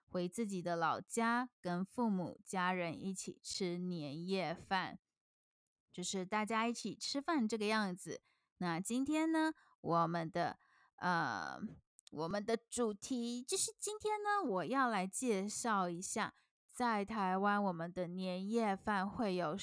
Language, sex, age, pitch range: Chinese, female, 20-39, 185-240 Hz